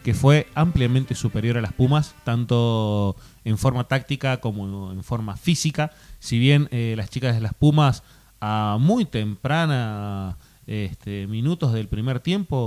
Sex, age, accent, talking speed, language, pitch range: male, 30-49, Argentinian, 145 wpm, Spanish, 110-140 Hz